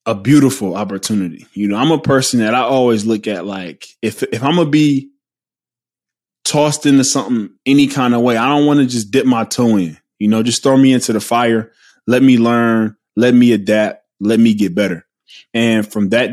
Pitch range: 110-130 Hz